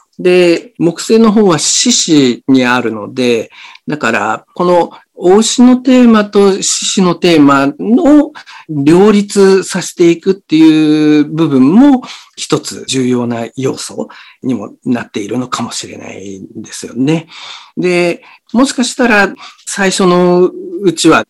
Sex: male